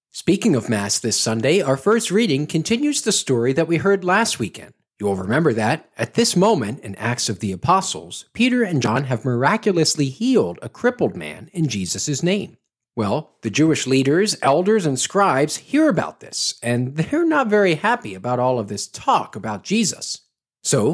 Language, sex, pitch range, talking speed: English, male, 140-220 Hz, 180 wpm